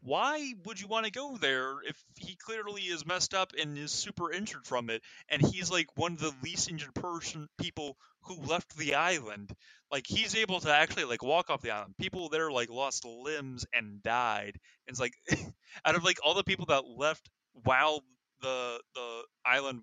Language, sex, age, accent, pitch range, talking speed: English, male, 20-39, American, 120-165 Hz, 195 wpm